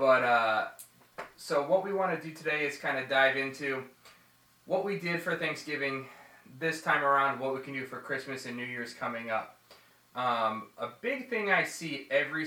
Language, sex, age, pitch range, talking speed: English, male, 20-39, 125-160 Hz, 190 wpm